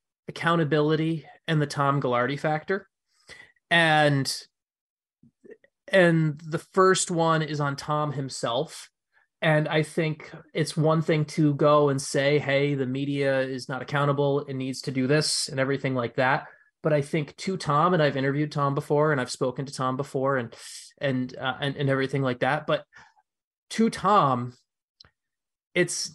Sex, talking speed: male, 155 wpm